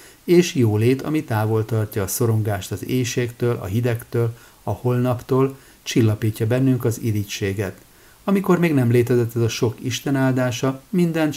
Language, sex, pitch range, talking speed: Hungarian, male, 105-125 Hz, 145 wpm